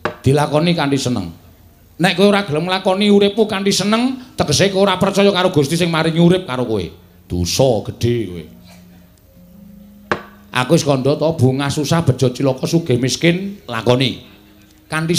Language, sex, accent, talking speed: Indonesian, male, native, 135 wpm